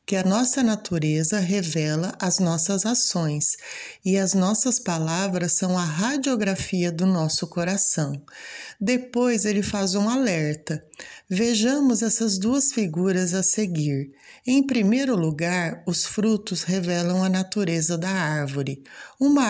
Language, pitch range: Portuguese, 170-225 Hz